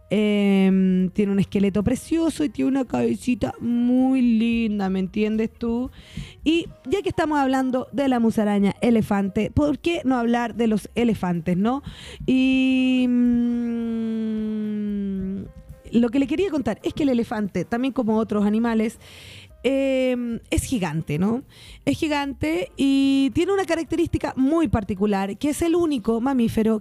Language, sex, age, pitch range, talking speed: Spanish, female, 20-39, 205-280 Hz, 140 wpm